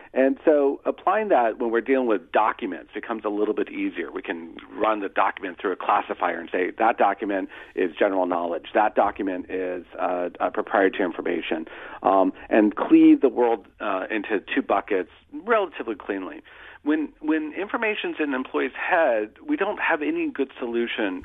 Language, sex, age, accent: English, male, 40-59, American